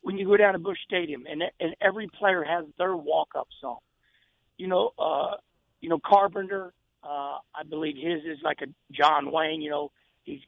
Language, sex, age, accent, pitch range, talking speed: English, male, 50-69, American, 165-215 Hz, 190 wpm